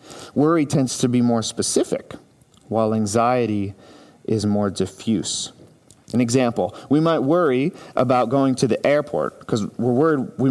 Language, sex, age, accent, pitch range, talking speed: English, male, 40-59, American, 110-130 Hz, 145 wpm